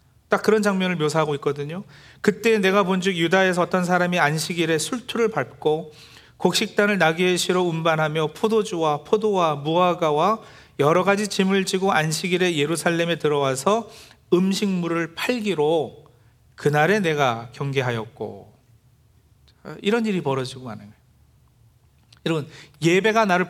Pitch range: 135-185 Hz